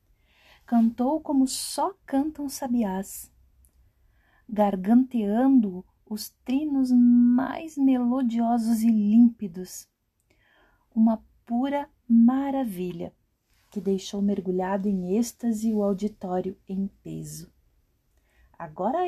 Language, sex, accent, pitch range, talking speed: Portuguese, female, Brazilian, 175-235 Hz, 80 wpm